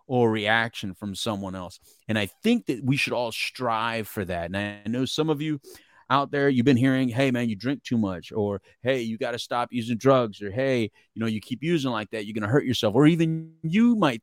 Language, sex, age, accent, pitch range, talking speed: English, male, 30-49, American, 115-155 Hz, 245 wpm